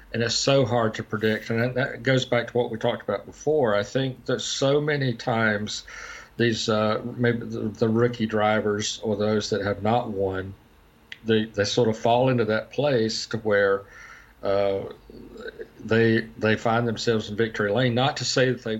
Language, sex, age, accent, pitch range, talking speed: English, male, 50-69, American, 110-125 Hz, 185 wpm